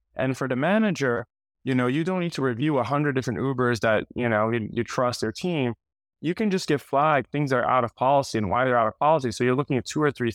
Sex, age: male, 20-39